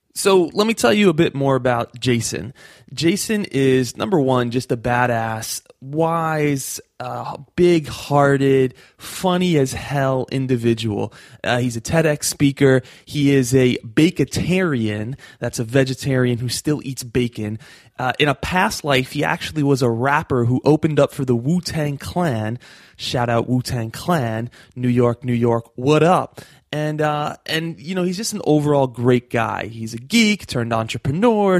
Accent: American